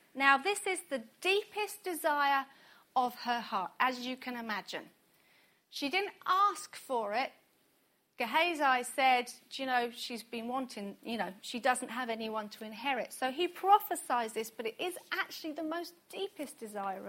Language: English